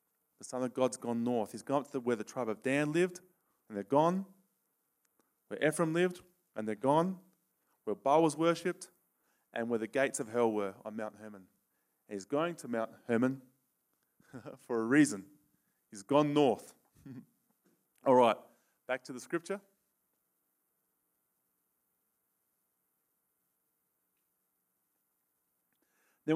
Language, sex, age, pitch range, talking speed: English, male, 20-39, 110-175 Hz, 130 wpm